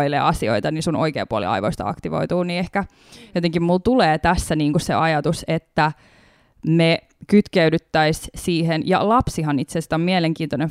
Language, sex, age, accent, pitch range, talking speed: Finnish, female, 20-39, native, 155-185 Hz, 145 wpm